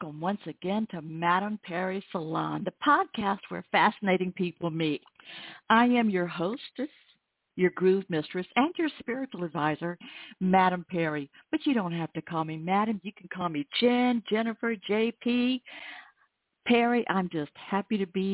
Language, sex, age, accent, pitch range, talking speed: English, female, 60-79, American, 165-215 Hz, 155 wpm